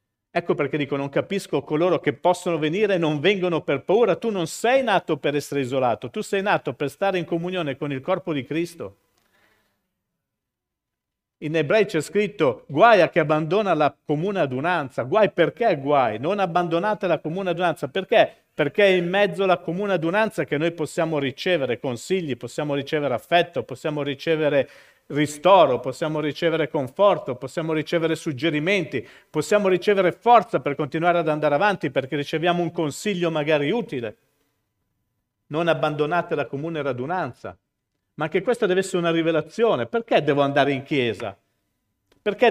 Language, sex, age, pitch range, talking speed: Italian, male, 50-69, 145-185 Hz, 155 wpm